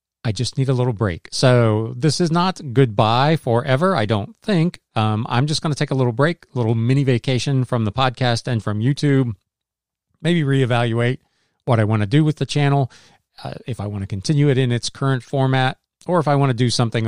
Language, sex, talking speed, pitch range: English, male, 220 wpm, 115-145 Hz